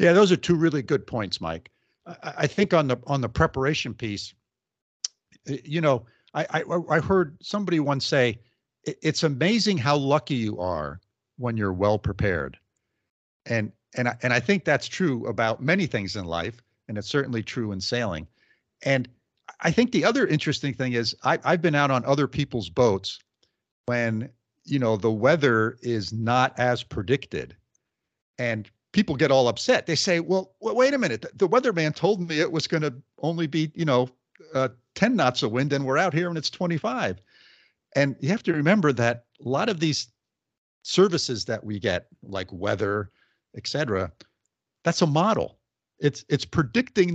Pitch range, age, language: 115-160 Hz, 50-69, English